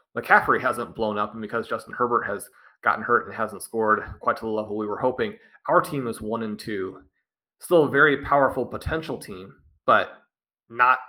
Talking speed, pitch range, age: 190 wpm, 110-130 Hz, 30-49